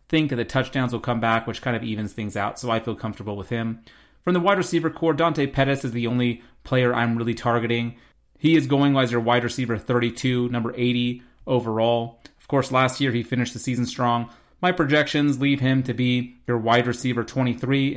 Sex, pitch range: male, 120-140 Hz